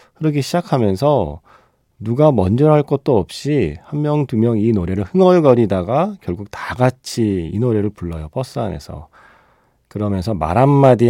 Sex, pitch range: male, 95-130 Hz